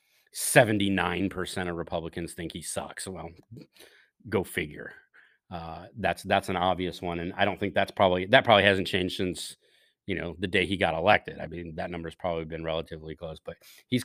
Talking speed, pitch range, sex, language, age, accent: 185 wpm, 95-115 Hz, male, English, 30-49, American